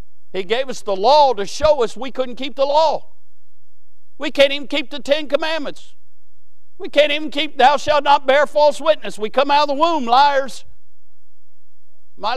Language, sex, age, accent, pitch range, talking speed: English, male, 50-69, American, 155-245 Hz, 185 wpm